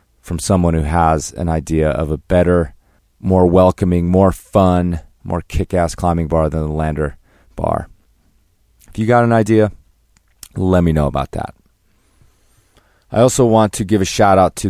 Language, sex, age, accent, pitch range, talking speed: English, male, 30-49, American, 85-100 Hz, 165 wpm